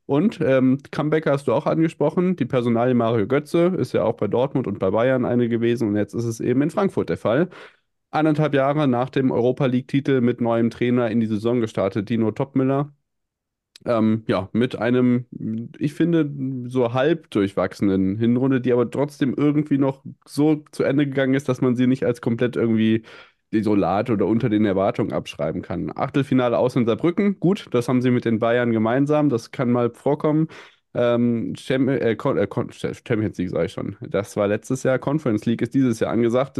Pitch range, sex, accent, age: 115-135 Hz, male, German, 20-39